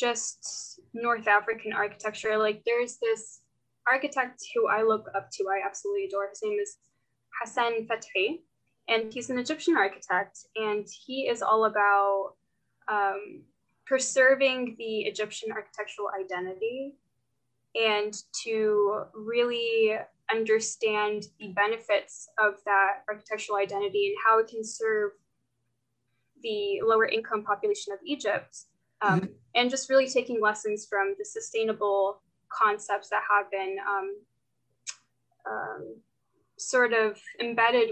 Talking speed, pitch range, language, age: 120 wpm, 205-255 Hz, English, 10-29